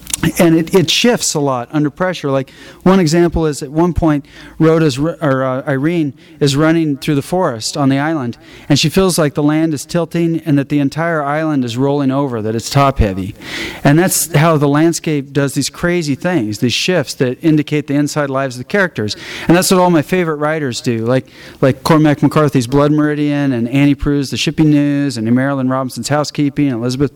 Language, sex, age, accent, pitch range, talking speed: English, male, 40-59, American, 135-160 Hz, 205 wpm